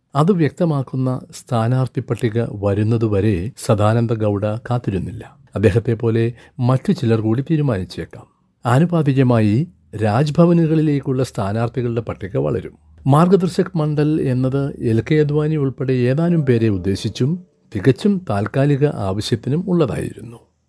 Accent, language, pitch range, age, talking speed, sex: native, Malayalam, 110-140 Hz, 60-79, 80 wpm, male